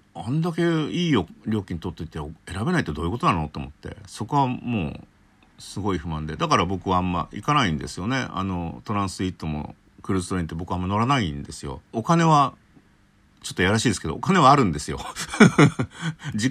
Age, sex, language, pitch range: 50-69, male, Japanese, 85-130 Hz